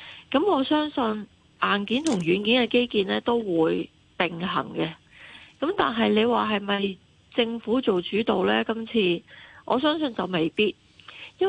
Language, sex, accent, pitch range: Chinese, female, native, 175-235 Hz